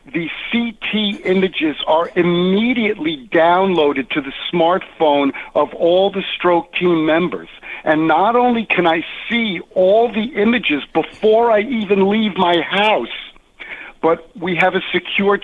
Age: 50-69